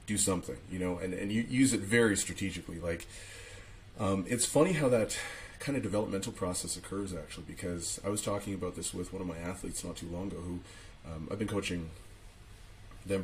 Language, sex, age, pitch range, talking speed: English, male, 30-49, 90-105 Hz, 200 wpm